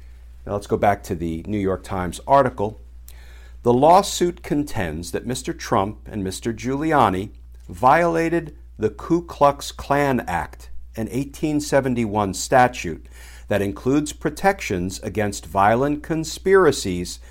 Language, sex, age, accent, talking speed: English, male, 50-69, American, 120 wpm